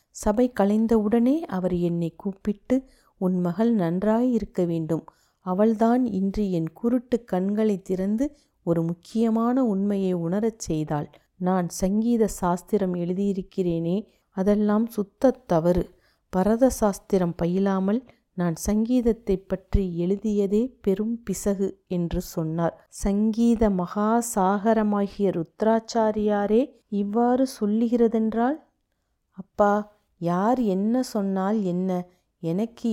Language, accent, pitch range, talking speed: Tamil, native, 185-225 Hz, 90 wpm